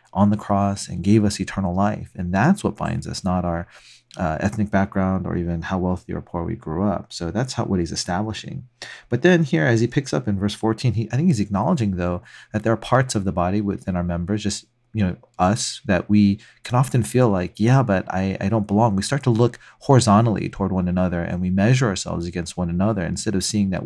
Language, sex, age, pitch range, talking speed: English, male, 30-49, 90-110 Hz, 235 wpm